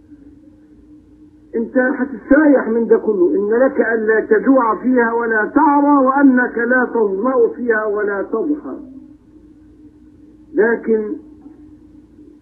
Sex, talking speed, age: male, 90 wpm, 50-69